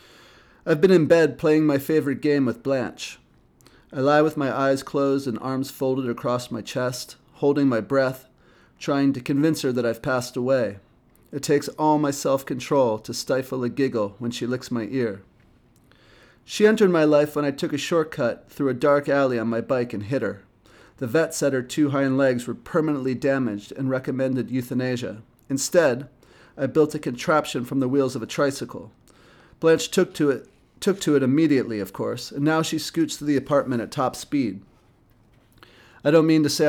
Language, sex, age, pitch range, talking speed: English, male, 30-49, 125-145 Hz, 190 wpm